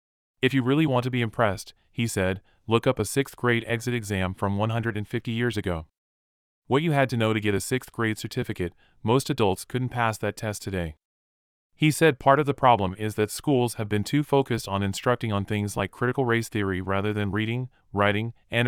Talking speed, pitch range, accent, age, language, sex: 205 wpm, 95-120 Hz, American, 30-49, English, male